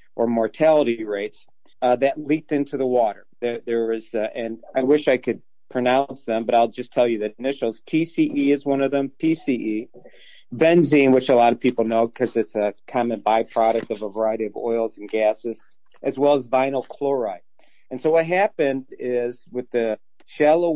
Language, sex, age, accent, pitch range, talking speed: English, male, 40-59, American, 115-140 Hz, 190 wpm